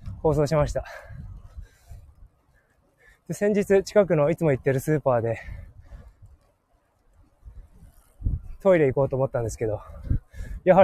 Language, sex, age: Japanese, male, 20-39